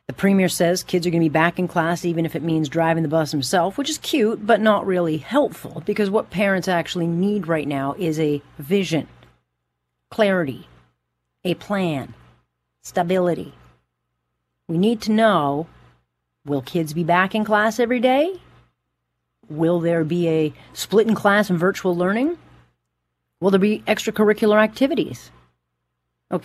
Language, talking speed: English, 155 wpm